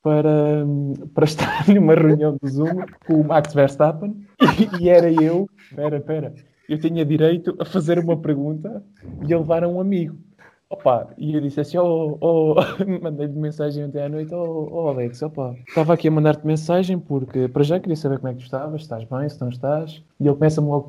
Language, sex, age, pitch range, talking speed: Portuguese, male, 20-39, 135-160 Hz, 205 wpm